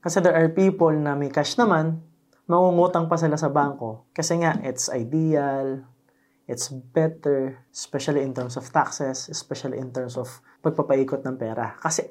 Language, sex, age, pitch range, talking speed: Filipino, male, 20-39, 130-165 Hz, 160 wpm